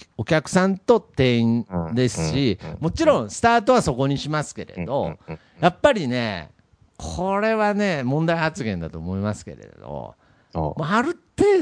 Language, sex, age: Japanese, male, 50-69